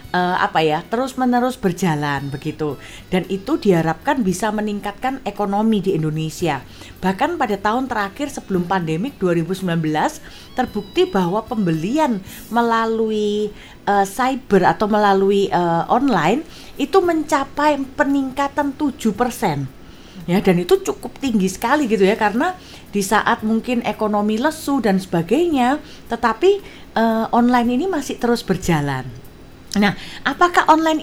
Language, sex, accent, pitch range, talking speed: Indonesian, female, native, 190-275 Hz, 115 wpm